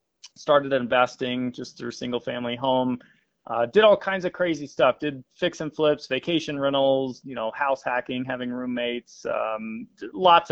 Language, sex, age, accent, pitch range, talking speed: English, male, 30-49, American, 125-150 Hz, 155 wpm